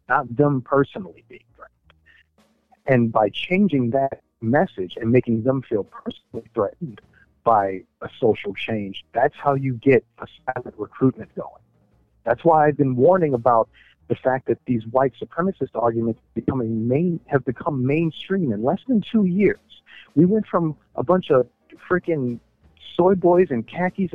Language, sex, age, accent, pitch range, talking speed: English, male, 50-69, American, 115-145 Hz, 155 wpm